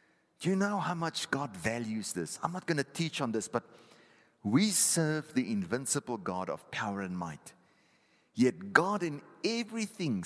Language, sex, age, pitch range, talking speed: English, male, 50-69, 120-185 Hz, 170 wpm